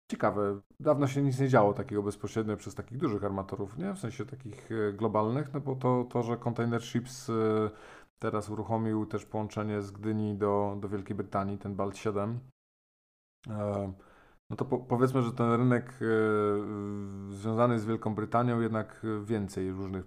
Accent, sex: native, male